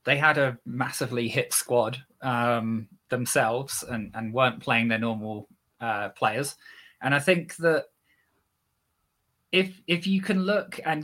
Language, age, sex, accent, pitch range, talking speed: English, 20-39, male, British, 115-155 Hz, 140 wpm